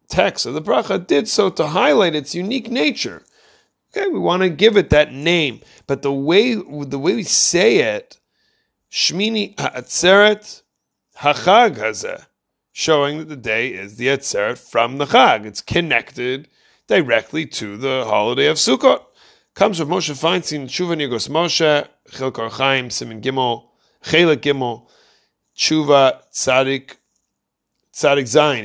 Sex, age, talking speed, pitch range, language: male, 30-49, 130 wpm, 130-170 Hz, English